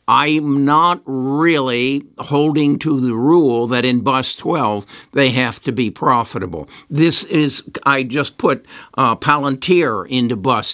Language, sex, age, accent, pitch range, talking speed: English, male, 60-79, American, 120-150 Hz, 140 wpm